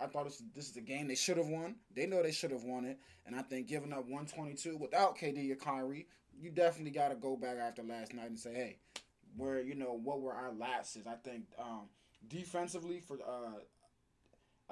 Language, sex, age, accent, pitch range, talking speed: English, male, 20-39, American, 115-160 Hz, 225 wpm